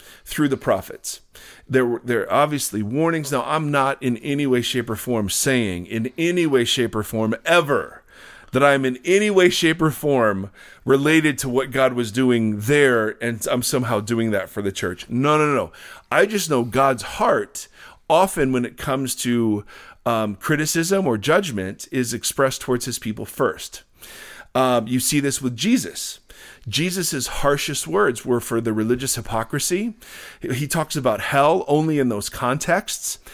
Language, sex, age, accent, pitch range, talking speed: English, male, 40-59, American, 115-145 Hz, 165 wpm